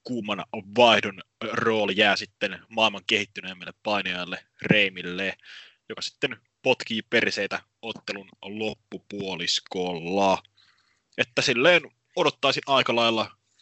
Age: 20-39